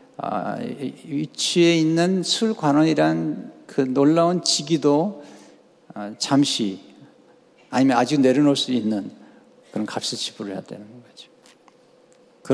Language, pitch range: Japanese, 135-180 Hz